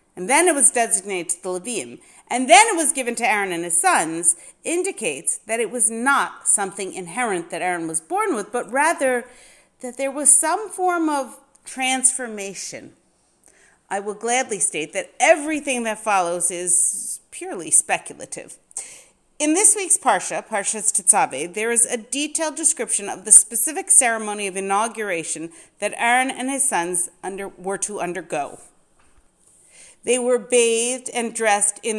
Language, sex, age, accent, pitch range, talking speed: English, female, 40-59, American, 195-260 Hz, 150 wpm